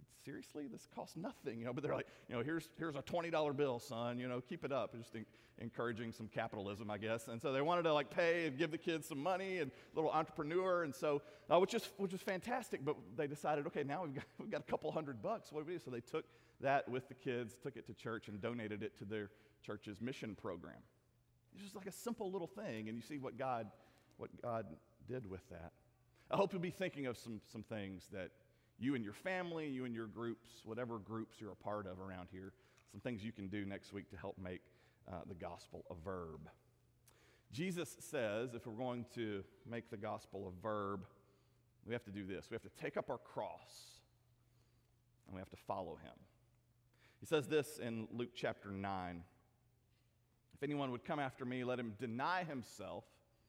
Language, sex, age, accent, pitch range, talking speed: English, male, 40-59, American, 110-145 Hz, 220 wpm